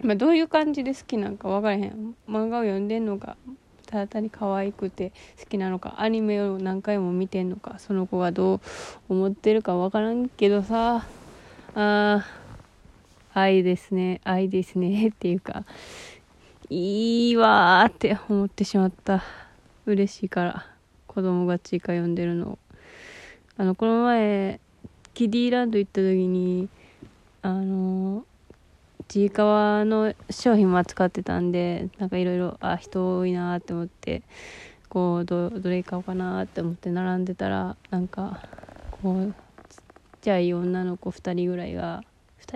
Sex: female